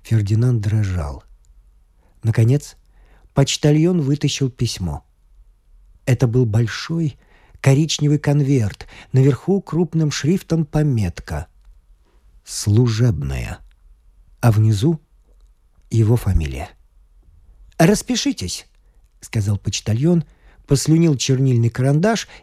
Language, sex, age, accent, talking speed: Russian, male, 50-69, native, 70 wpm